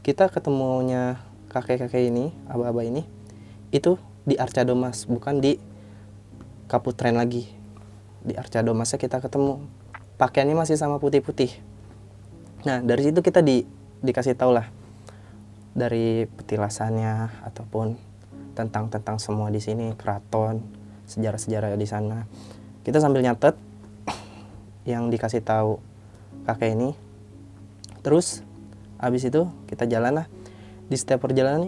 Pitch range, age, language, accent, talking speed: 105-130 Hz, 20-39, Indonesian, native, 110 wpm